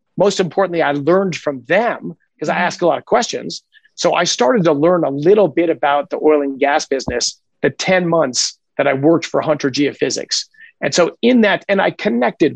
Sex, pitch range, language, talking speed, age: male, 145-180 Hz, English, 205 wpm, 50-69